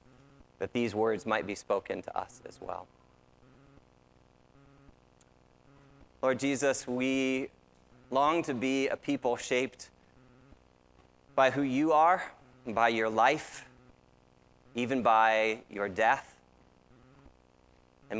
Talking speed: 100 wpm